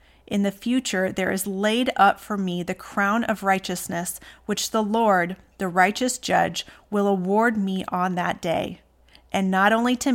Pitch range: 185-225 Hz